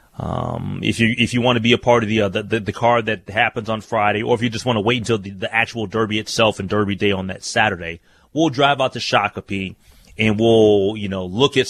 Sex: male